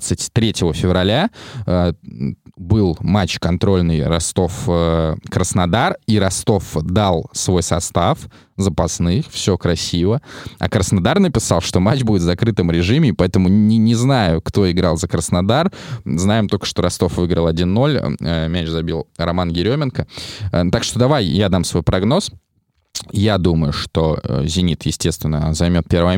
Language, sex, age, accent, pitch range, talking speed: Russian, male, 20-39, native, 85-105 Hz, 125 wpm